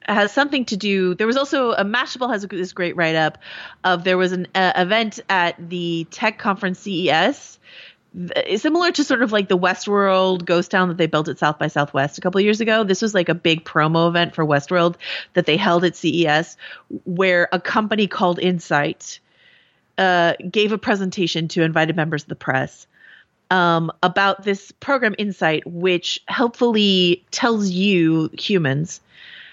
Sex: female